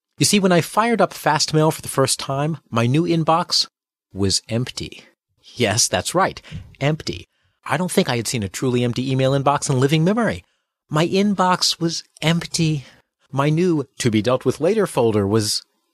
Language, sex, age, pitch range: English, male, 40-59, 105-155 Hz